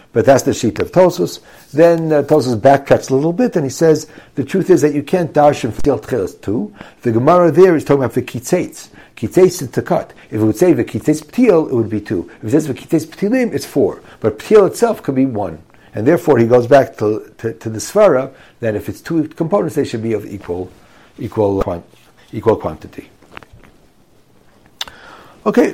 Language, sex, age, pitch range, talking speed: English, male, 60-79, 115-165 Hz, 195 wpm